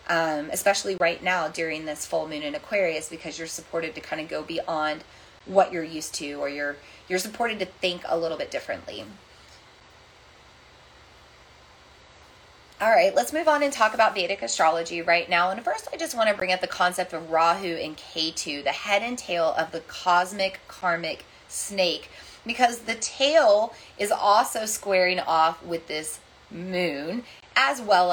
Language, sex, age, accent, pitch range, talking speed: English, female, 30-49, American, 165-210 Hz, 170 wpm